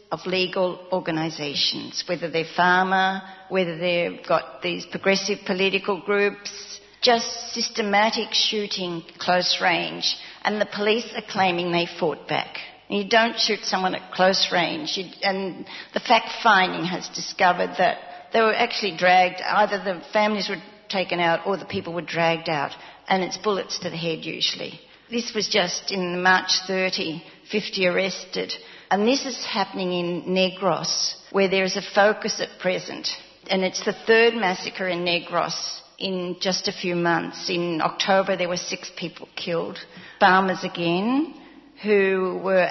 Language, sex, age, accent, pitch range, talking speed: English, female, 50-69, Australian, 180-205 Hz, 150 wpm